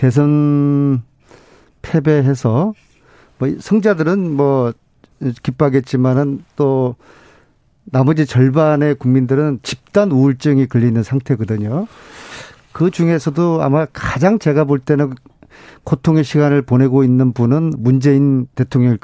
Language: Korean